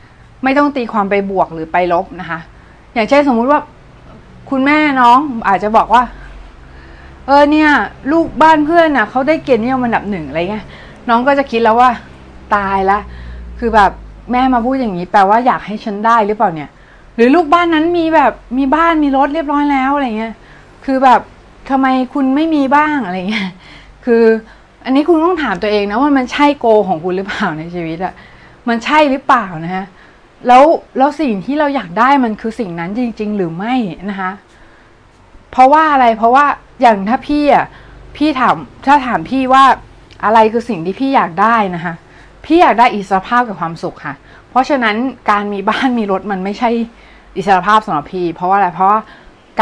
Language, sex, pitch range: Thai, female, 195-265 Hz